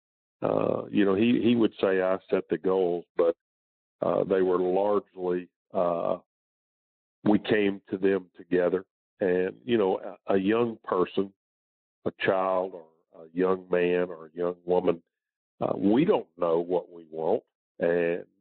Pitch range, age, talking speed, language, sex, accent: 90-100 Hz, 50-69, 155 wpm, English, male, American